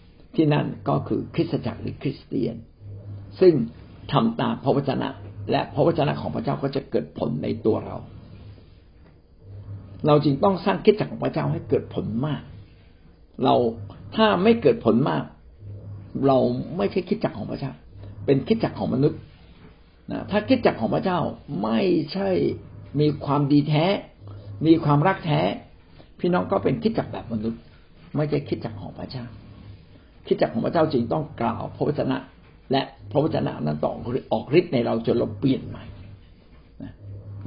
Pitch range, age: 100-145 Hz, 60-79